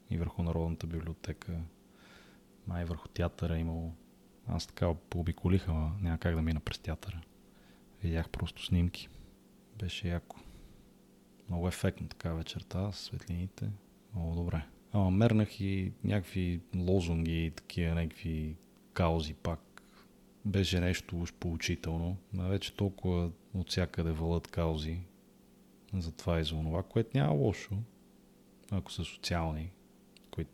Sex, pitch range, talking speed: male, 80-95 Hz, 125 wpm